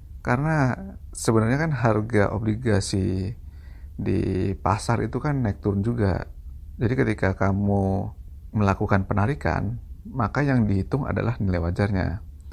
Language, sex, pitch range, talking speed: Indonesian, male, 80-110 Hz, 110 wpm